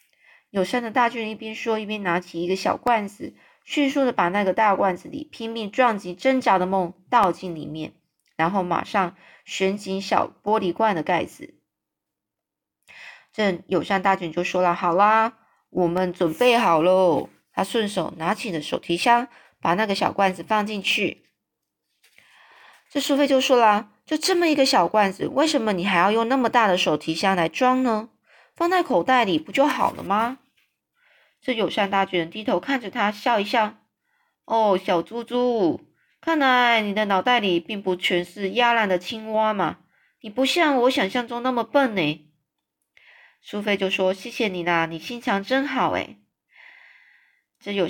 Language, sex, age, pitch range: Chinese, female, 20-39, 185-245 Hz